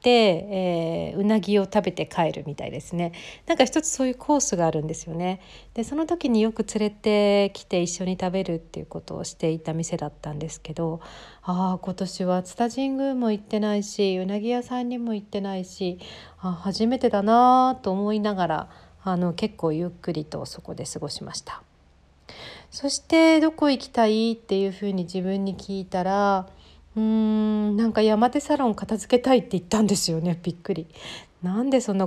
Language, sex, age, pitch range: Japanese, female, 40-59, 170-220 Hz